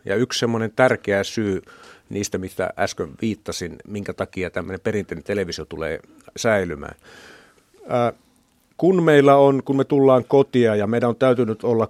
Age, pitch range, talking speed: 50-69, 95-125 Hz, 145 wpm